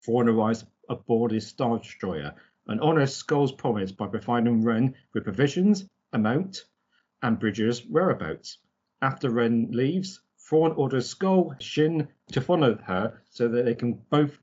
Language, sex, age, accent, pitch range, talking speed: English, male, 40-59, British, 115-155 Hz, 145 wpm